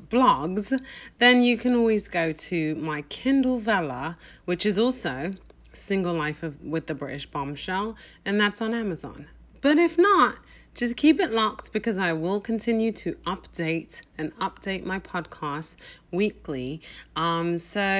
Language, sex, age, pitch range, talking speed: English, female, 30-49, 170-240 Hz, 145 wpm